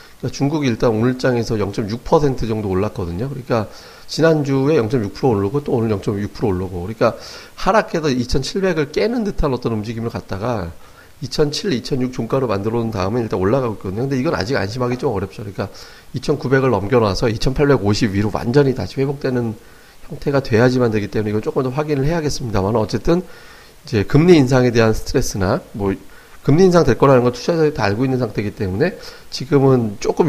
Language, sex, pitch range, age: Korean, male, 110-140 Hz, 40-59